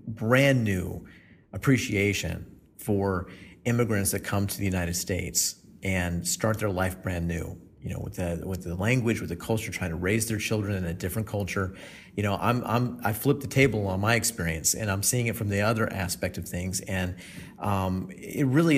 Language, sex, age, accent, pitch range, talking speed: English, male, 40-59, American, 95-115 Hz, 190 wpm